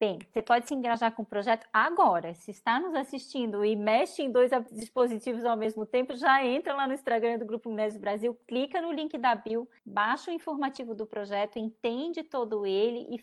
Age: 20-39